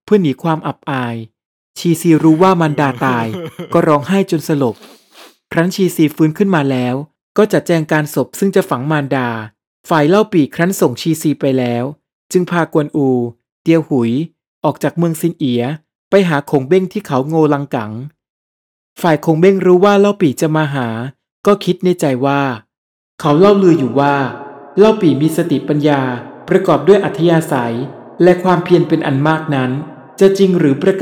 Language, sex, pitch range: Thai, male, 135-180 Hz